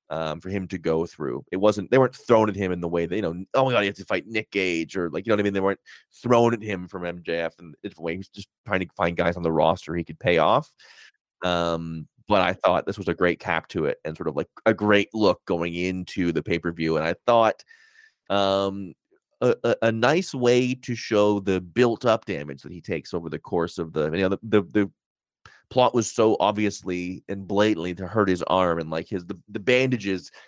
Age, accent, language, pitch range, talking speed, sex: 30-49, American, English, 85-110 Hz, 240 wpm, male